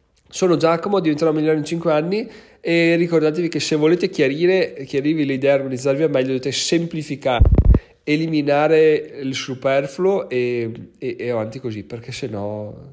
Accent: native